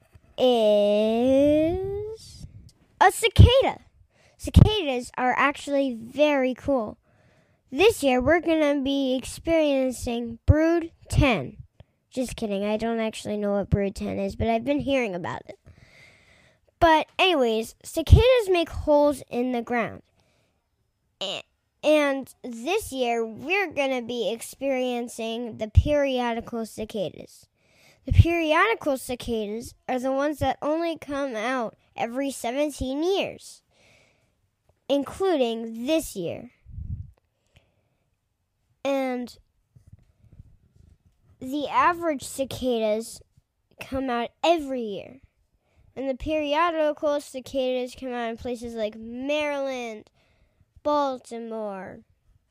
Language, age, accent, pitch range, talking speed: English, 10-29, American, 225-290 Hz, 100 wpm